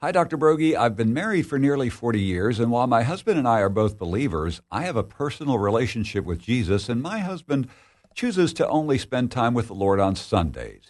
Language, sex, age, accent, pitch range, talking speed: English, male, 60-79, American, 95-135 Hz, 215 wpm